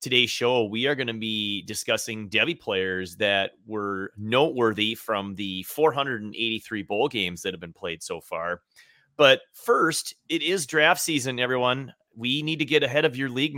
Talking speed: 170 wpm